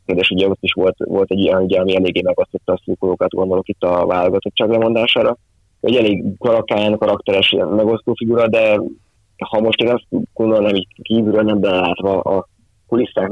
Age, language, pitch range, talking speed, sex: 20-39, Hungarian, 95-105 Hz, 165 wpm, male